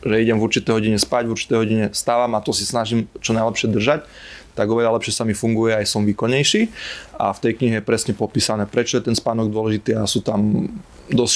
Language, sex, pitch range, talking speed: Slovak, male, 110-130 Hz, 215 wpm